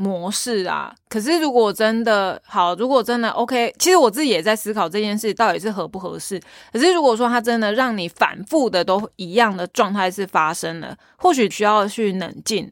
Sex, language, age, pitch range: female, Chinese, 20-39, 190-240 Hz